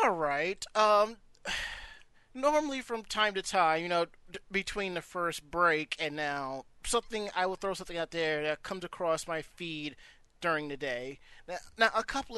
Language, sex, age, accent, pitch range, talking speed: English, male, 30-49, American, 160-210 Hz, 165 wpm